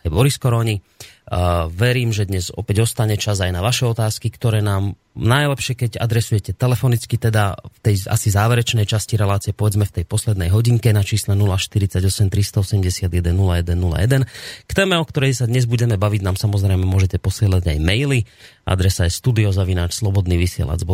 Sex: male